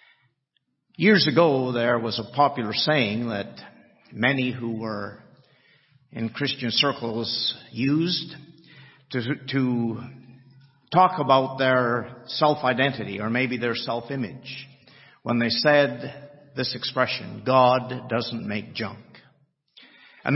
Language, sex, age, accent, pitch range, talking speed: English, male, 50-69, American, 120-150 Hz, 105 wpm